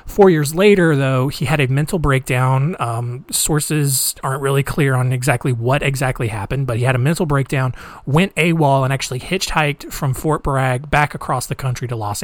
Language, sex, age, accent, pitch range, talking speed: English, male, 30-49, American, 130-155 Hz, 190 wpm